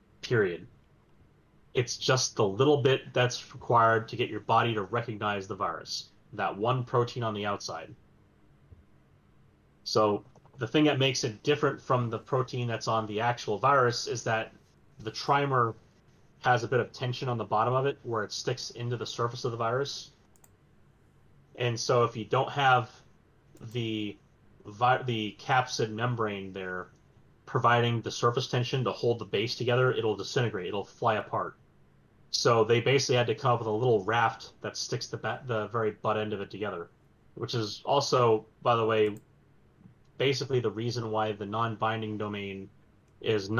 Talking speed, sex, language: 165 wpm, male, English